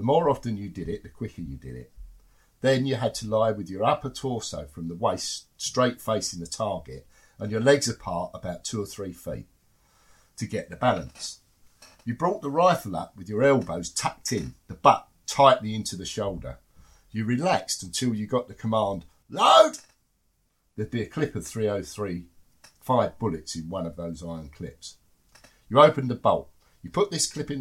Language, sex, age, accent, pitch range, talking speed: English, male, 50-69, British, 85-120 Hz, 190 wpm